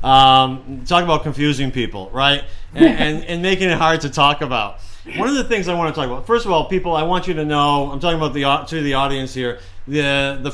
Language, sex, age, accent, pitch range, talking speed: English, male, 40-59, American, 125-150 Hz, 245 wpm